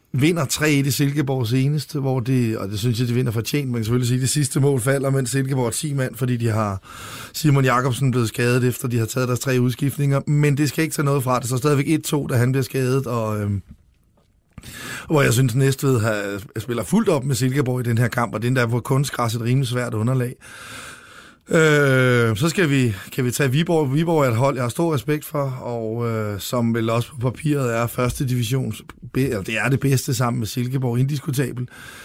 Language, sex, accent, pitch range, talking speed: Danish, male, native, 120-145 Hz, 230 wpm